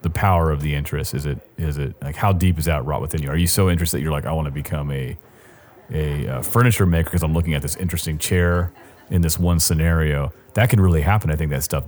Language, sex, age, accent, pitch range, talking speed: English, male, 30-49, American, 80-100 Hz, 265 wpm